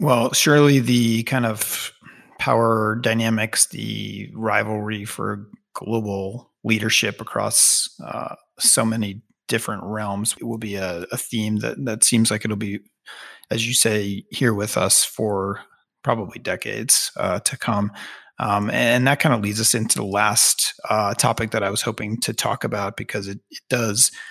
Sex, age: male, 30-49